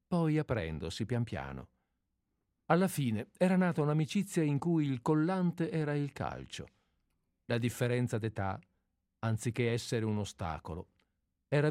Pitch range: 90-145 Hz